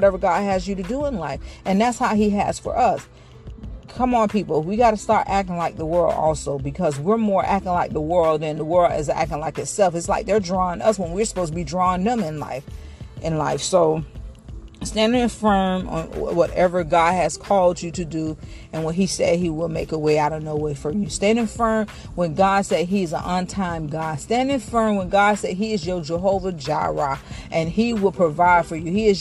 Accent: American